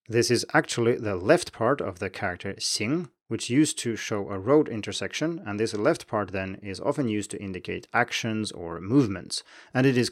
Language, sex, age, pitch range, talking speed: English, male, 30-49, 100-140 Hz, 195 wpm